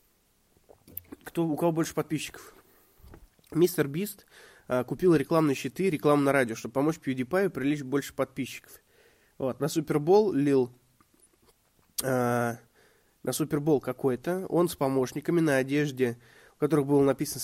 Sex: male